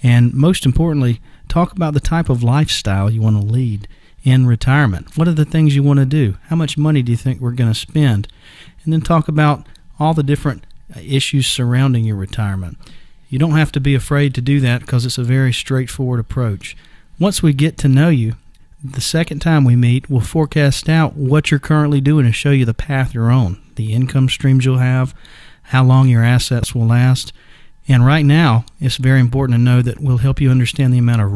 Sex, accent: male, American